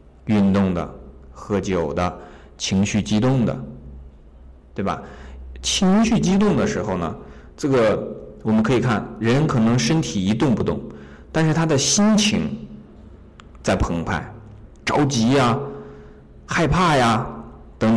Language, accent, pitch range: Chinese, native, 80-130 Hz